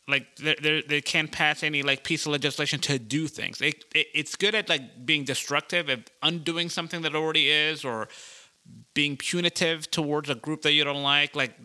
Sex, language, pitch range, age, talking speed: male, English, 140-160 Hz, 30-49, 190 wpm